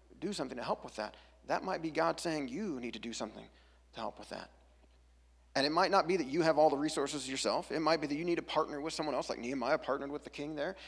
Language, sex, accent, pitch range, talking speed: English, male, American, 120-155 Hz, 275 wpm